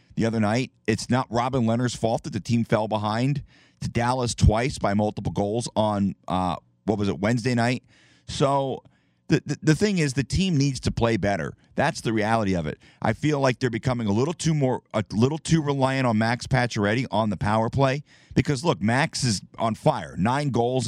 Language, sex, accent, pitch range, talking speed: English, male, American, 105-135 Hz, 205 wpm